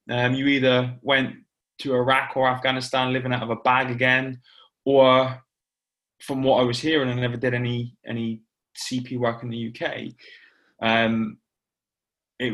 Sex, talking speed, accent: male, 155 wpm, British